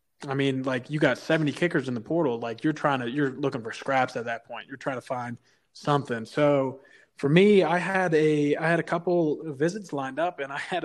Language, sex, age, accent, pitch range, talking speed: English, male, 20-39, American, 130-155 Hz, 240 wpm